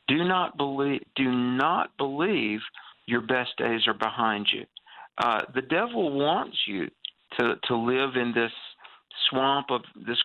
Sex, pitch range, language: male, 115-140 Hz, English